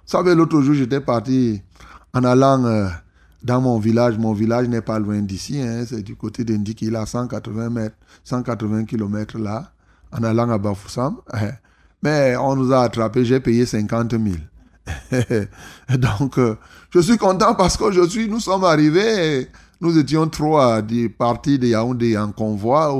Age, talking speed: 30-49, 165 wpm